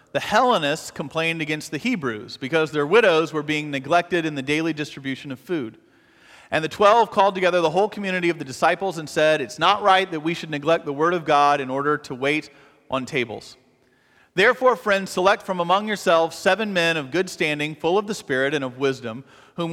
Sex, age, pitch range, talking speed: male, 40-59, 145-180 Hz, 205 wpm